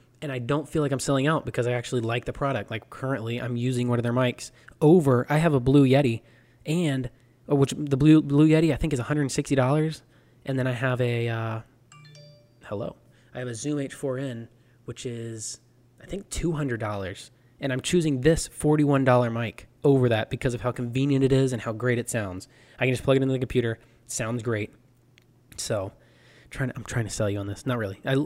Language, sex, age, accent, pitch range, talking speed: English, male, 20-39, American, 120-140 Hz, 205 wpm